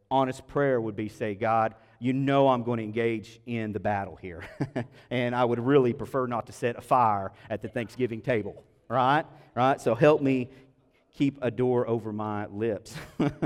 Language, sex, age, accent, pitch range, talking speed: English, male, 40-59, American, 110-135 Hz, 185 wpm